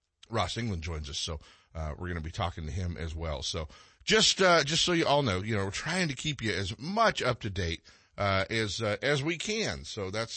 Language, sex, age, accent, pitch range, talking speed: English, male, 50-69, American, 95-140 Hz, 245 wpm